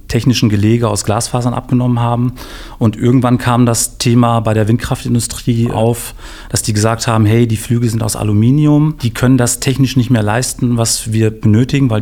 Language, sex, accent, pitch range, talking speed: German, male, German, 110-125 Hz, 180 wpm